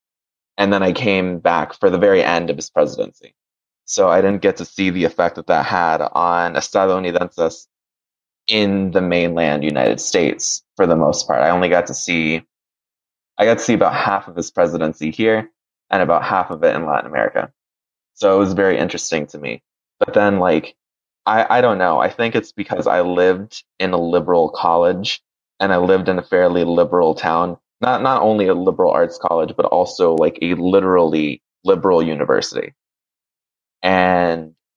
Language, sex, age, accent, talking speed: English, male, 20-39, American, 180 wpm